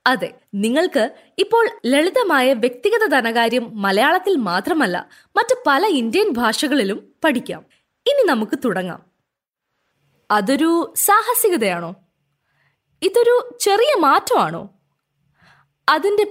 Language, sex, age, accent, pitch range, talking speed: Malayalam, female, 20-39, native, 225-380 Hz, 80 wpm